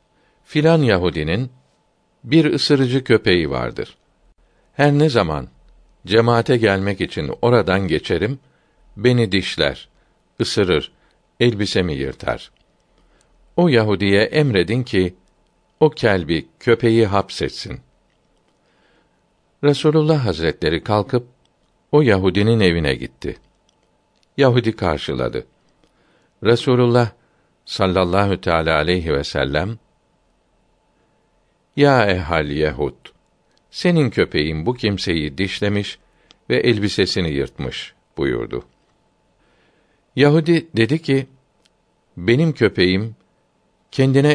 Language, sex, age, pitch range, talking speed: Turkish, male, 60-79, 90-130 Hz, 80 wpm